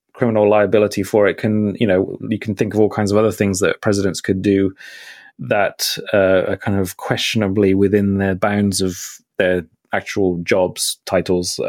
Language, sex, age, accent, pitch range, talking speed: English, male, 30-49, British, 100-120 Hz, 170 wpm